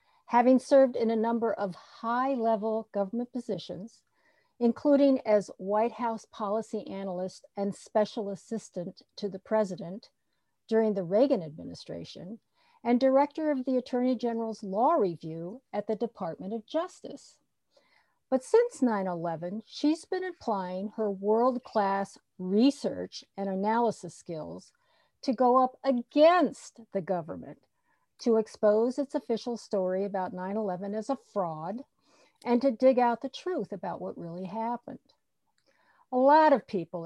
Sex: female